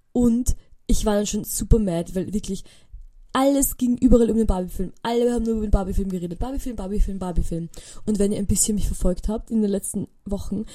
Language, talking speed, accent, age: German, 205 wpm, German, 20-39